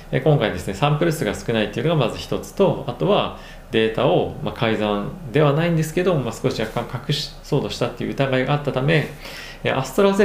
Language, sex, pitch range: Japanese, male, 105-145 Hz